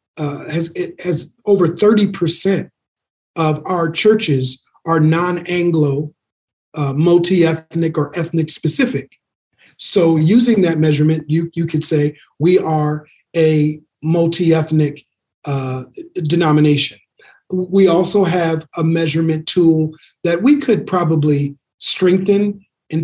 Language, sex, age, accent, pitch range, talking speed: English, male, 40-59, American, 150-180 Hz, 110 wpm